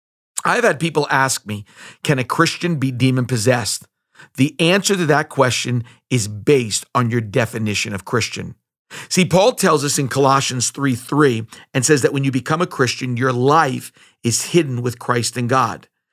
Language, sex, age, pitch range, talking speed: English, male, 50-69, 120-150 Hz, 165 wpm